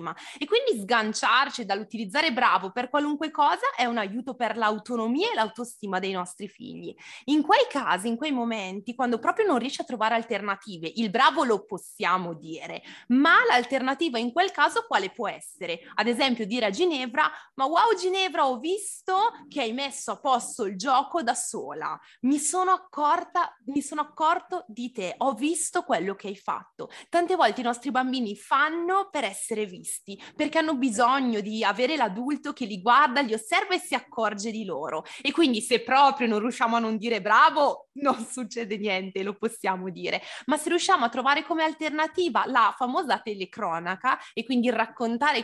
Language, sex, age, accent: Italian, female, 20-39, native